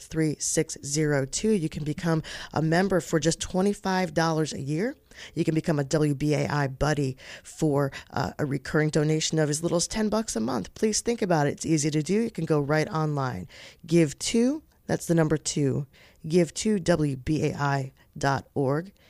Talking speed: 155 wpm